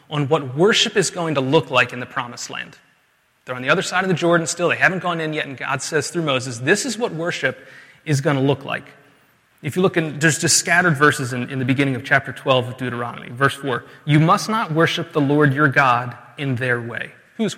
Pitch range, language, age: 130-165 Hz, English, 30-49